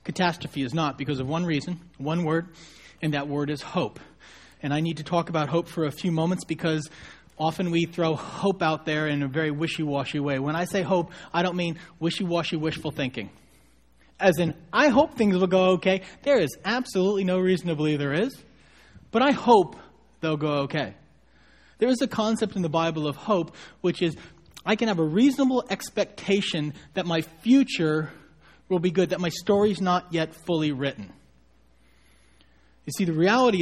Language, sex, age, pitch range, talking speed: English, male, 30-49, 130-175 Hz, 185 wpm